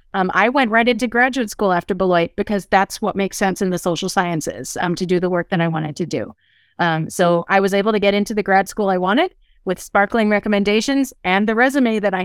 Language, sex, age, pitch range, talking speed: Vietnamese, female, 30-49, 185-225 Hz, 240 wpm